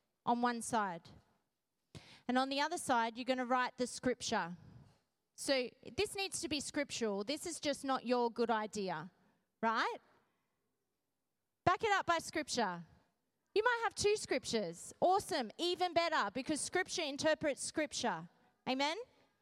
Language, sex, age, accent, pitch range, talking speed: English, female, 30-49, Australian, 240-315 Hz, 140 wpm